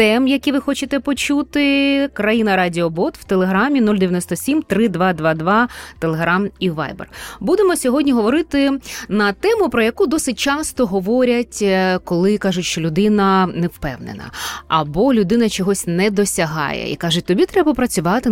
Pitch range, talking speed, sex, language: 170-255 Hz, 130 wpm, female, Ukrainian